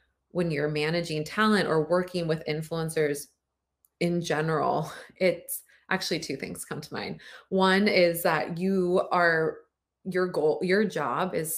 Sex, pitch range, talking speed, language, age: female, 150-190 Hz, 140 wpm, English, 20-39